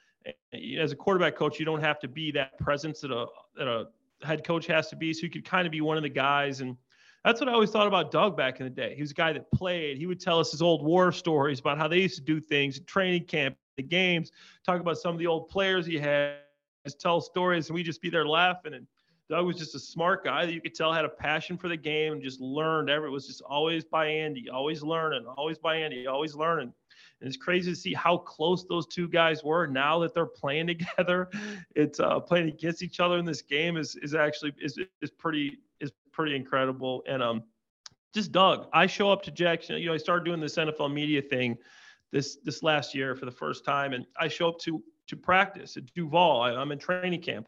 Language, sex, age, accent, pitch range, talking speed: English, male, 30-49, American, 145-175 Hz, 240 wpm